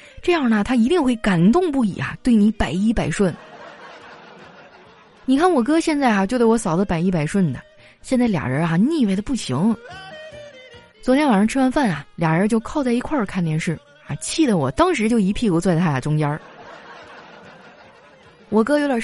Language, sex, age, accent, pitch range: Chinese, female, 20-39, native, 170-270 Hz